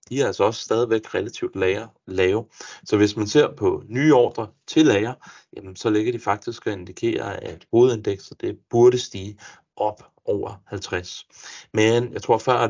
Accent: native